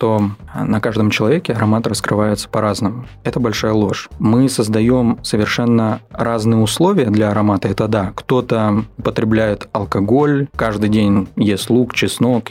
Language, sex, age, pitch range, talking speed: Russian, male, 20-39, 105-120 Hz, 130 wpm